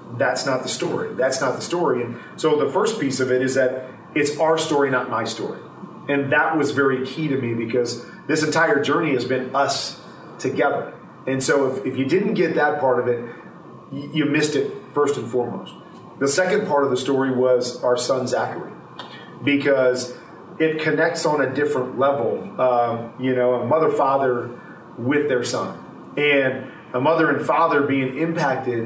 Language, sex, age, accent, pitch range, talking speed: English, male, 40-59, American, 125-150 Hz, 185 wpm